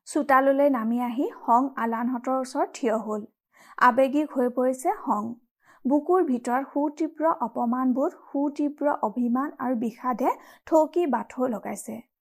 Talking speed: 100 wpm